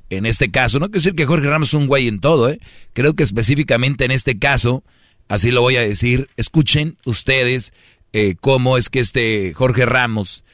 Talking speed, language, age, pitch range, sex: 200 wpm, Spanish, 40-59, 110-135 Hz, male